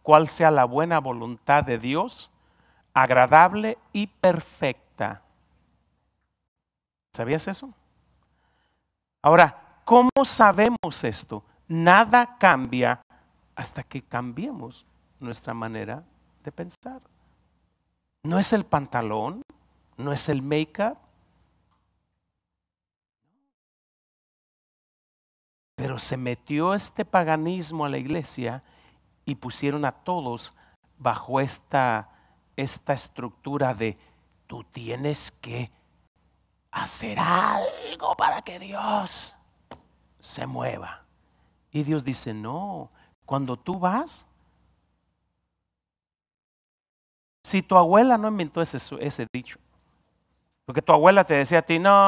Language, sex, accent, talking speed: English, male, Mexican, 95 wpm